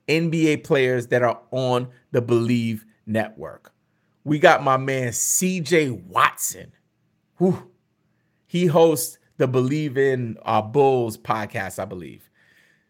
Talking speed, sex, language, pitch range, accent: 110 wpm, male, English, 130-175 Hz, American